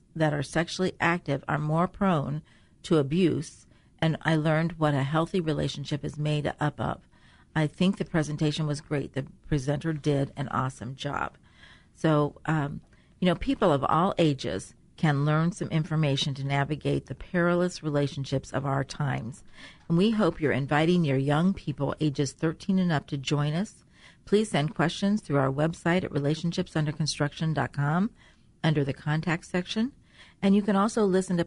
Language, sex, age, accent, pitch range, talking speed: English, female, 40-59, American, 145-175 Hz, 160 wpm